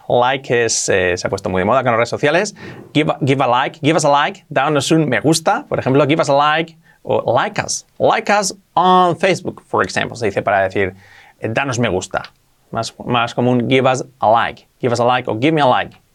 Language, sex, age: English, male, 30-49